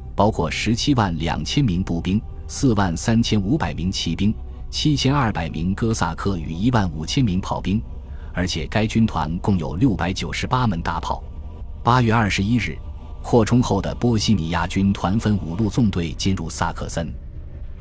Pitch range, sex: 80-110 Hz, male